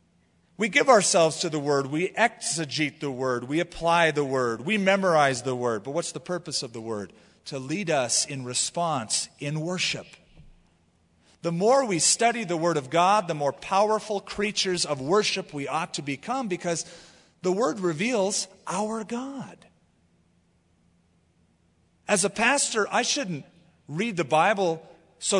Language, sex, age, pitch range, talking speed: English, male, 40-59, 130-180 Hz, 155 wpm